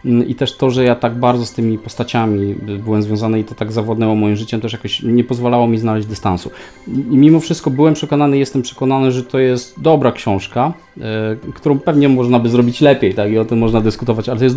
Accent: native